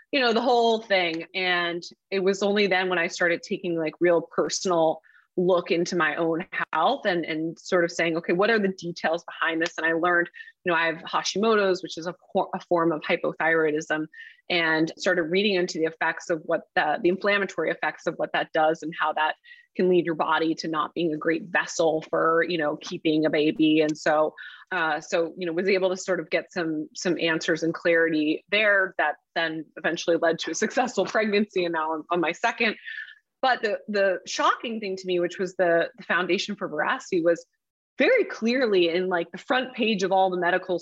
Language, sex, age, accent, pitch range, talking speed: English, female, 20-39, American, 170-225 Hz, 210 wpm